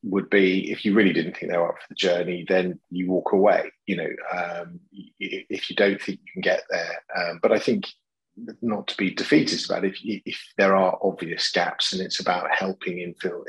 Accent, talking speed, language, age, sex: British, 215 wpm, English, 30-49, male